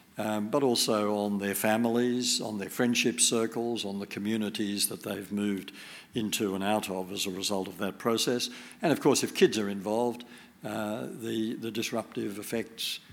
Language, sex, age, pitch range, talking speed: English, male, 60-79, 100-115 Hz, 175 wpm